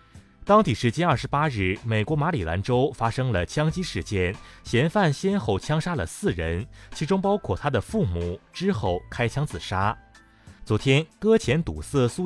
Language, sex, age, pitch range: Chinese, male, 30-49, 95-155 Hz